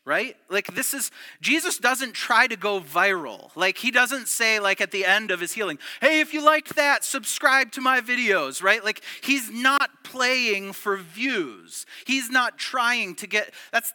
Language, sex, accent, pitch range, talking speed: English, male, American, 195-275 Hz, 185 wpm